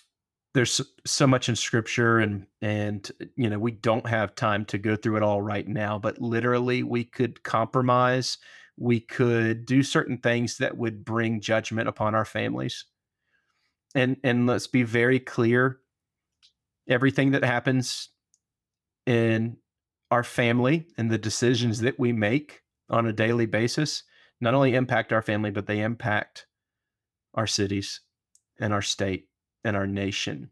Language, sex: English, male